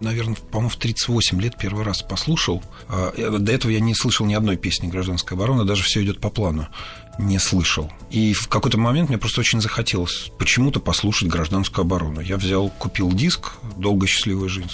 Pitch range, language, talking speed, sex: 90-115 Hz, Russian, 190 wpm, male